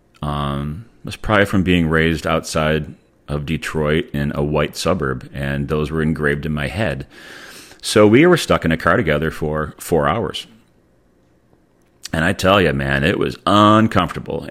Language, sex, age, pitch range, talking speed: English, male, 40-59, 75-95 Hz, 165 wpm